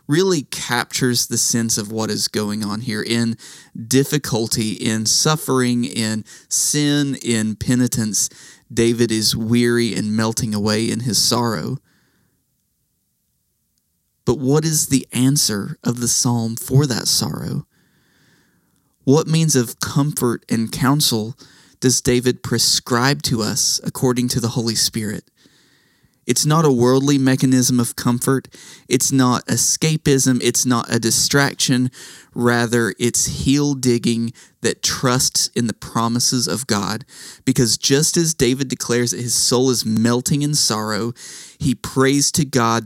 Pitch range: 115-135 Hz